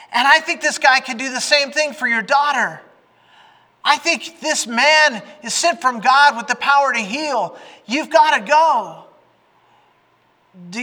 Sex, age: male, 30-49